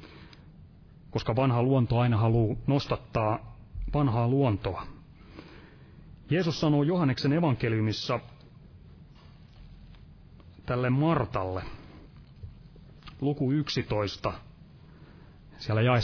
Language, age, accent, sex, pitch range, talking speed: Finnish, 30-49, native, male, 110-140 Hz, 65 wpm